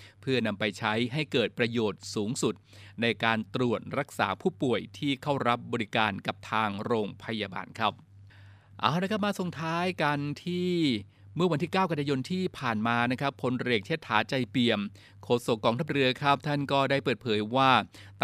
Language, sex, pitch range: Thai, male, 110-140 Hz